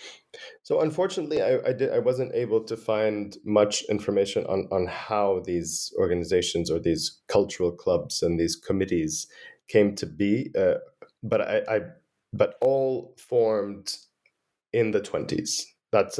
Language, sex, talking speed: English, male, 140 wpm